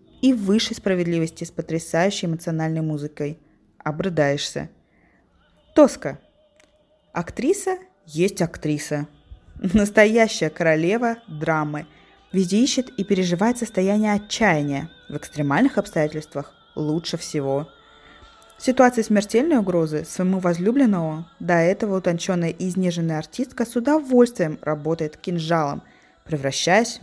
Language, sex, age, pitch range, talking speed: Russian, female, 20-39, 155-215 Hz, 95 wpm